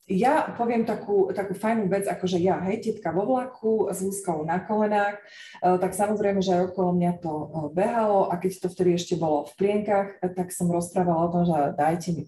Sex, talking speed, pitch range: female, 205 wpm, 175-205 Hz